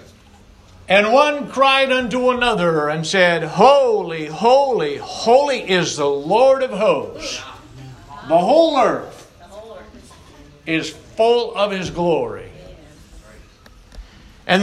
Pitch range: 145-210 Hz